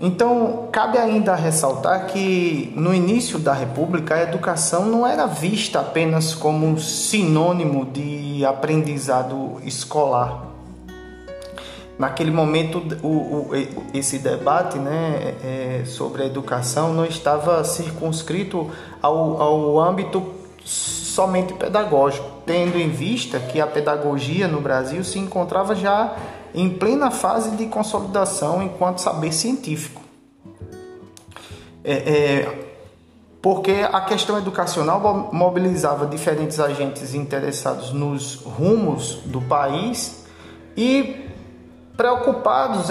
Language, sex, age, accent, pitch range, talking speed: Portuguese, male, 20-39, Brazilian, 140-190 Hz, 100 wpm